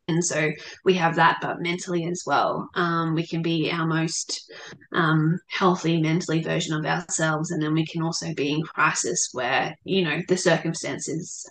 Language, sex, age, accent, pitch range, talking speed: English, female, 20-39, Australian, 175-205 Hz, 175 wpm